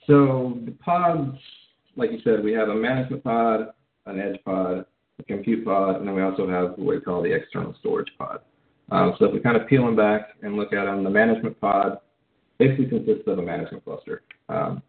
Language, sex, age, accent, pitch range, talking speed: English, male, 40-59, American, 95-115 Hz, 215 wpm